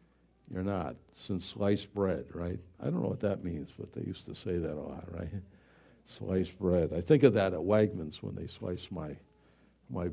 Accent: American